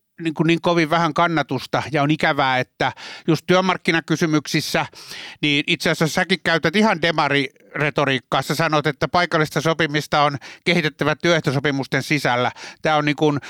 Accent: native